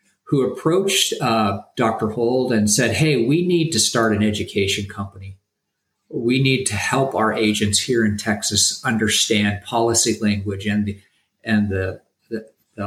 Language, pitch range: English, 105-130 Hz